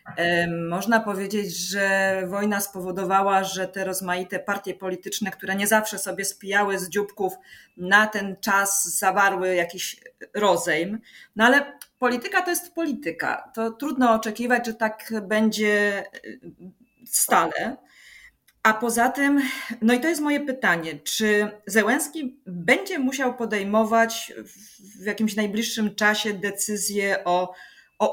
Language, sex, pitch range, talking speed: Polish, female, 195-240 Hz, 120 wpm